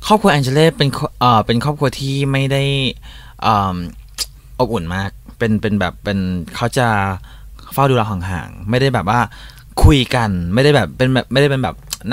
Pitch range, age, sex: 105-135 Hz, 20-39, male